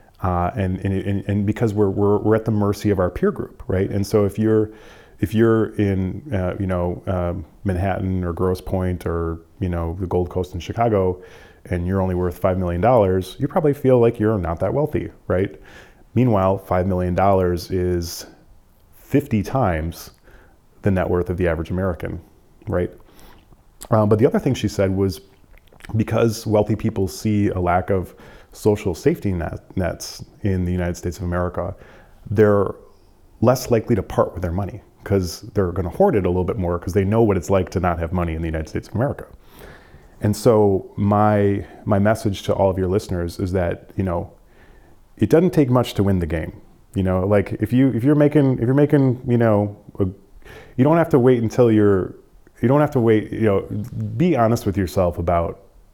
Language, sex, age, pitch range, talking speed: English, male, 30-49, 90-110 Hz, 195 wpm